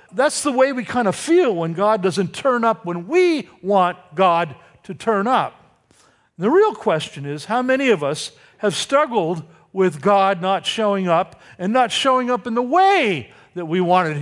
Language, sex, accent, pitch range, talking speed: English, male, American, 180-255 Hz, 190 wpm